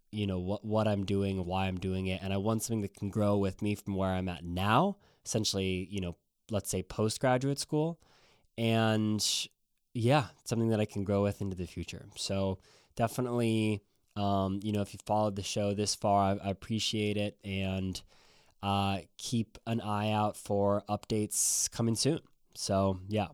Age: 20-39